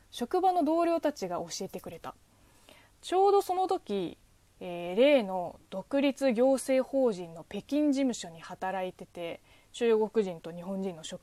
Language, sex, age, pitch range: Japanese, female, 20-39, 180-295 Hz